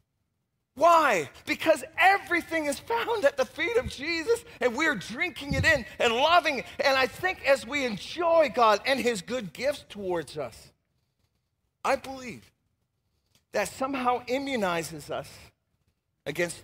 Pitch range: 165-255 Hz